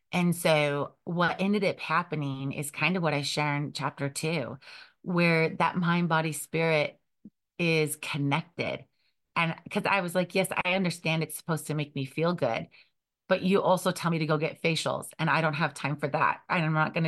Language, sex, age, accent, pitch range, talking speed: English, female, 30-49, American, 150-185 Hz, 200 wpm